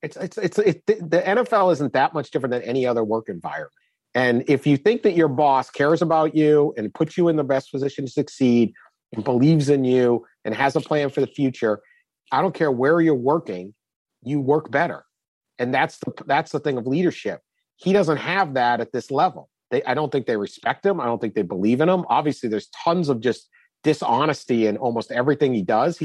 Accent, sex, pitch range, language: American, male, 130-170 Hz, English